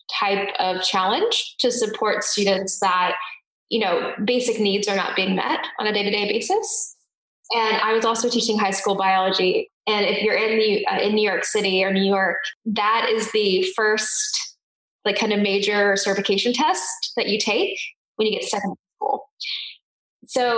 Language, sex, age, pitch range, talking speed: English, female, 10-29, 200-245 Hz, 170 wpm